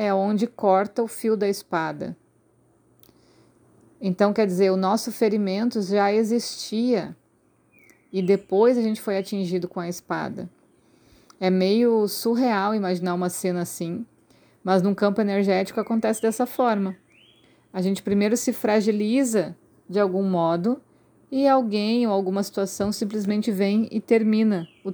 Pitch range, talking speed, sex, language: 185-220 Hz, 135 wpm, female, Portuguese